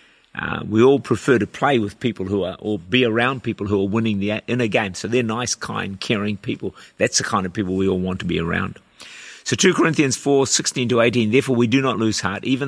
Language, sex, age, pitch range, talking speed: English, male, 50-69, 100-125 Hz, 250 wpm